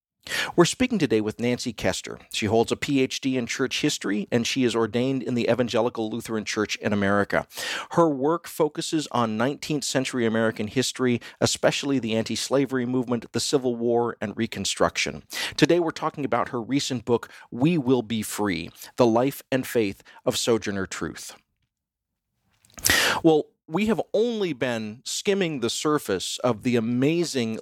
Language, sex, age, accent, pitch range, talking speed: English, male, 40-59, American, 115-150 Hz, 150 wpm